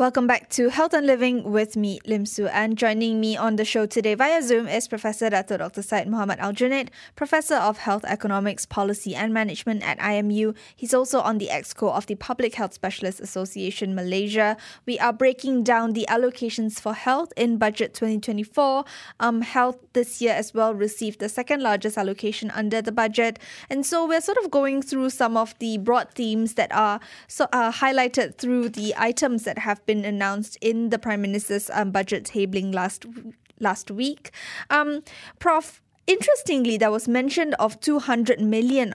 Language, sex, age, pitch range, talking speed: English, female, 10-29, 210-250 Hz, 180 wpm